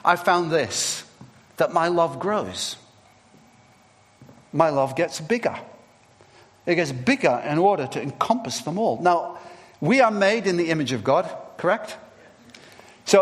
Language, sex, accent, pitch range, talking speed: English, male, British, 175-235 Hz, 140 wpm